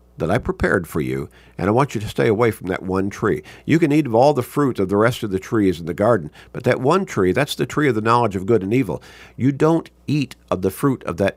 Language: English